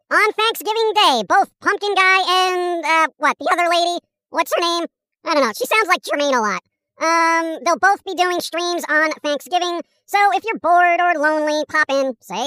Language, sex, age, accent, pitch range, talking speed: English, male, 40-59, American, 275-355 Hz, 195 wpm